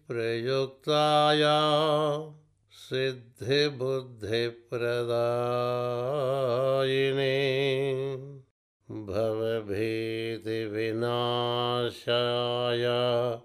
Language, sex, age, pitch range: Telugu, male, 60-79, 120-150 Hz